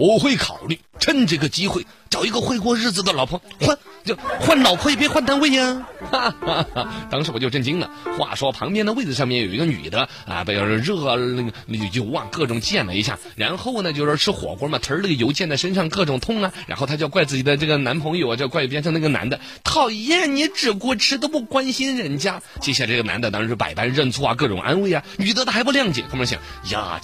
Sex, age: male, 30-49